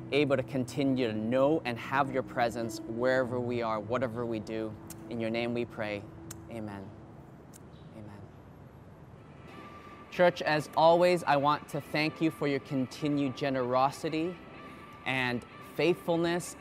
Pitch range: 120-150 Hz